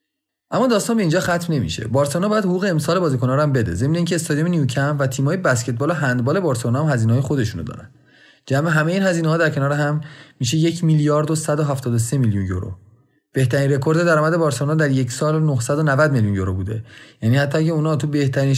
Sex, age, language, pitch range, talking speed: male, 30-49, Persian, 125-165 Hz, 190 wpm